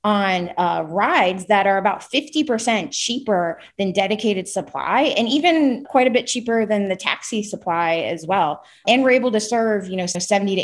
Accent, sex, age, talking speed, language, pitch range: American, female, 20-39, 180 wpm, English, 180-225 Hz